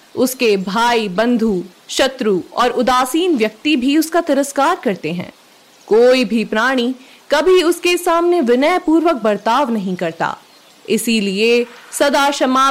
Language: Hindi